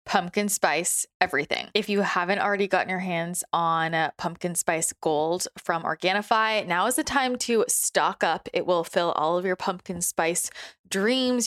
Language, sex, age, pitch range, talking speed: English, female, 20-39, 165-210 Hz, 170 wpm